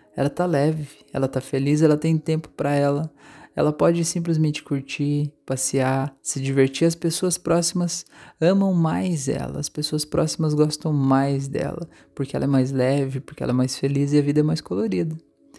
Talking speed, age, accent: 175 wpm, 20-39, Brazilian